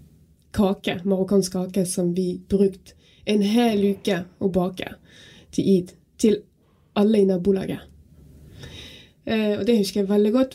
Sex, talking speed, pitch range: female, 110 wpm, 180-210 Hz